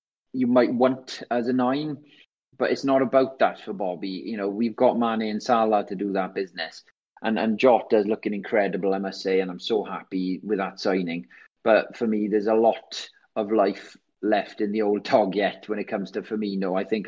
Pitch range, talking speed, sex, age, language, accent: 105-135 Hz, 210 wpm, male, 30-49, English, British